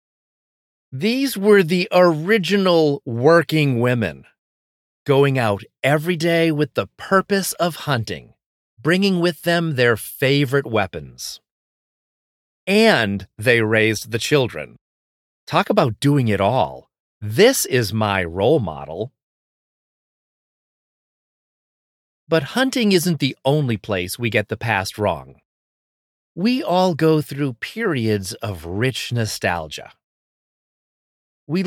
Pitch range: 110-165 Hz